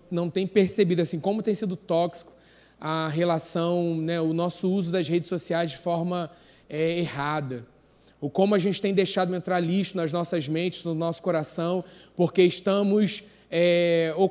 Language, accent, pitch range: Portuguese, Brazilian, 170-205 Hz